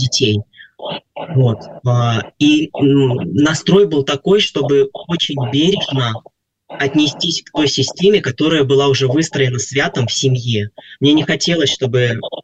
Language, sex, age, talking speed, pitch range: Russian, male, 20-39, 115 wpm, 130-155 Hz